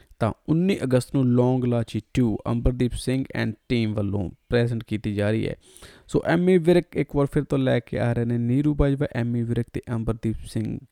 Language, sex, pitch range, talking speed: Punjabi, male, 110-130 Hz, 185 wpm